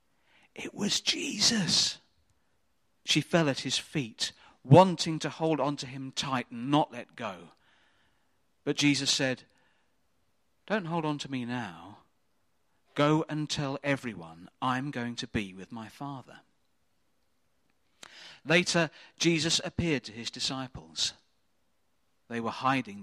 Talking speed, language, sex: 125 wpm, English, male